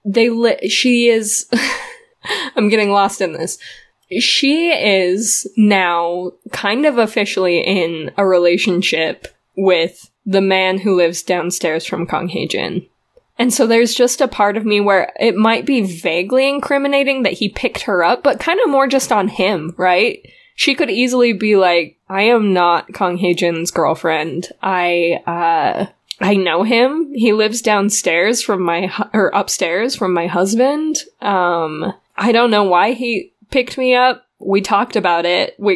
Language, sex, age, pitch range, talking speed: English, female, 10-29, 180-235 Hz, 160 wpm